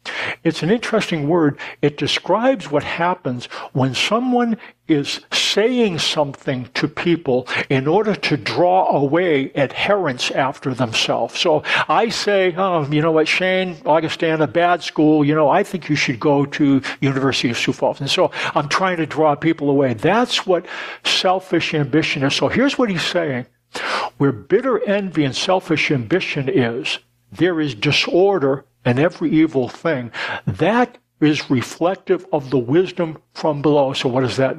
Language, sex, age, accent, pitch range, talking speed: English, male, 60-79, American, 135-185 Hz, 160 wpm